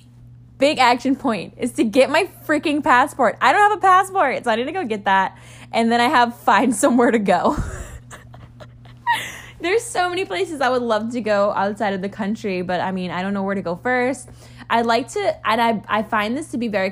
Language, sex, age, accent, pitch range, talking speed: English, female, 10-29, American, 185-245 Hz, 225 wpm